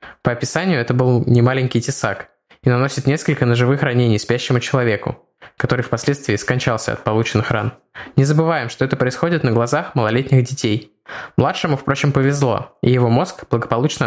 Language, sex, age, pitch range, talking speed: Russian, male, 20-39, 115-140 Hz, 150 wpm